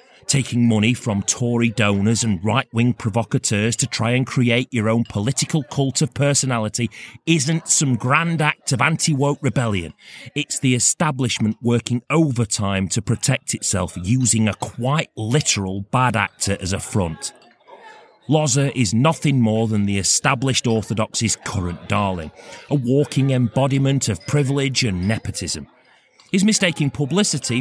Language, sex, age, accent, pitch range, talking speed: English, male, 30-49, British, 110-145 Hz, 135 wpm